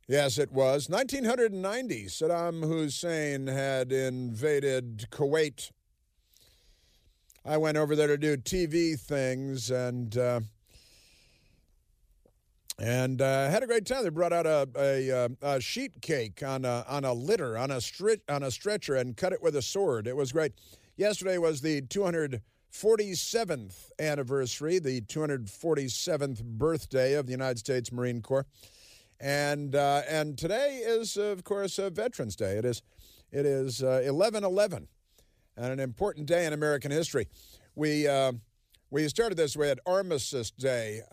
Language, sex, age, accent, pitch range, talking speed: English, male, 50-69, American, 125-160 Hz, 145 wpm